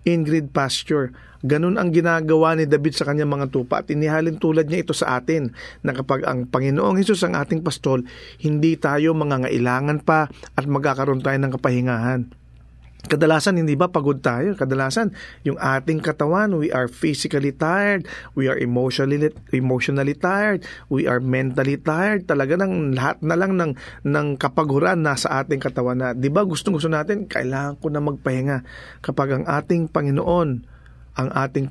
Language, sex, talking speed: English, male, 160 wpm